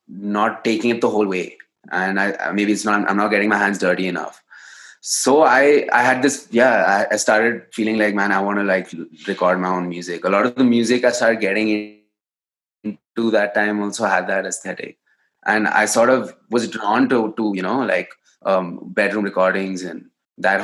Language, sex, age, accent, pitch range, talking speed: English, male, 20-39, Indian, 95-115 Hz, 200 wpm